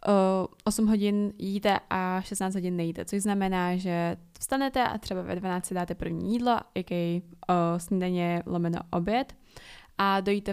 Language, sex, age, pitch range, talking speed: Czech, female, 10-29, 180-220 Hz, 135 wpm